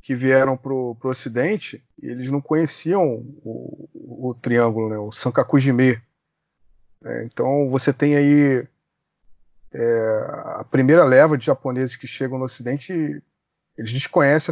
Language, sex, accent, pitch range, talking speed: Portuguese, male, Brazilian, 125-150 Hz, 140 wpm